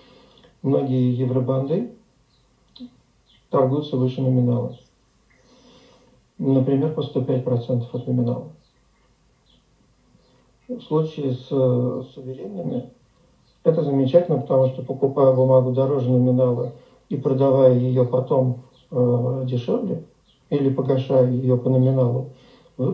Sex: male